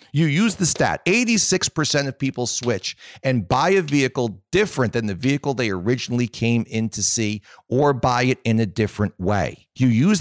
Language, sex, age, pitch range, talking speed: English, male, 40-59, 130-200 Hz, 180 wpm